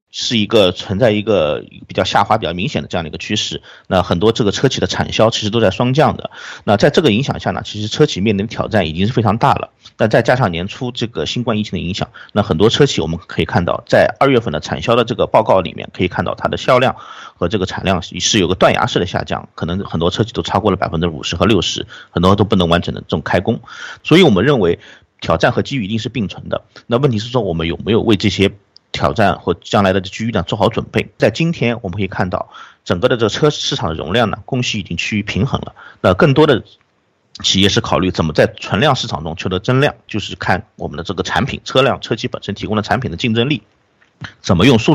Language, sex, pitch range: Chinese, male, 95-120 Hz